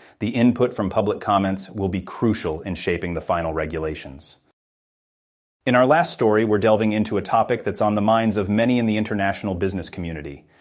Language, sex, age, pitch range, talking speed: English, male, 30-49, 90-110 Hz, 185 wpm